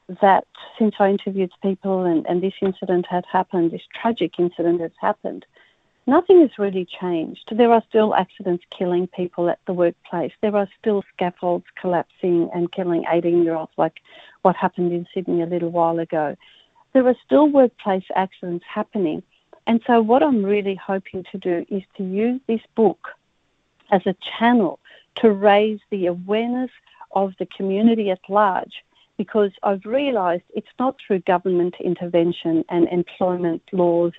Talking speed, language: 155 wpm, English